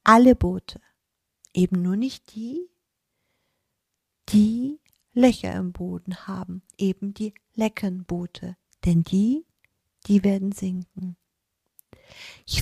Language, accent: German, German